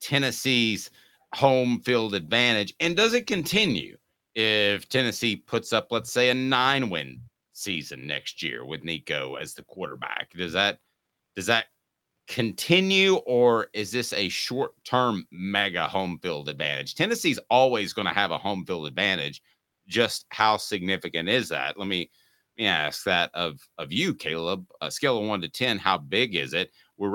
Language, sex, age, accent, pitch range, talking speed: English, male, 40-59, American, 95-125 Hz, 165 wpm